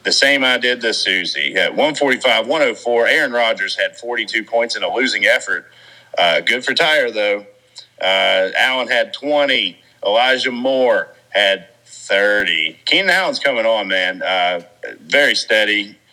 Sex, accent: male, American